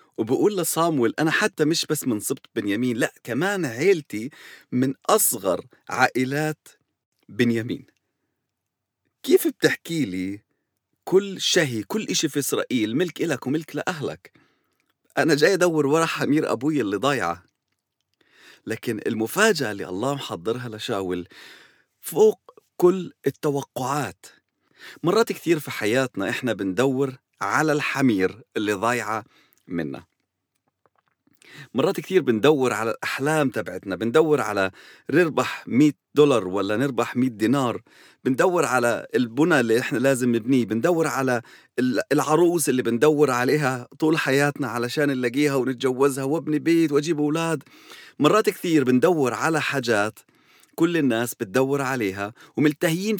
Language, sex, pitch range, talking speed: English, male, 120-160 Hz, 115 wpm